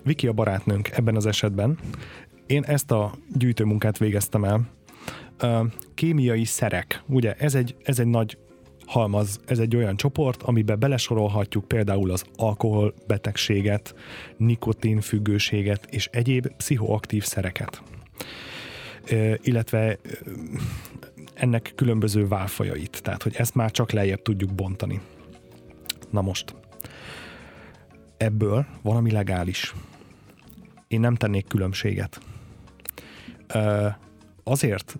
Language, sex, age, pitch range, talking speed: Hungarian, male, 30-49, 100-120 Hz, 95 wpm